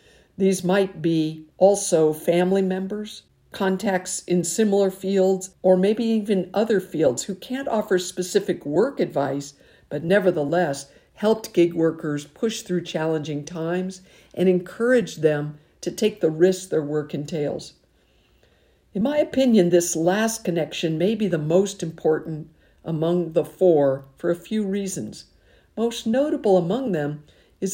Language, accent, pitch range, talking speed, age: English, American, 160-195 Hz, 135 wpm, 50-69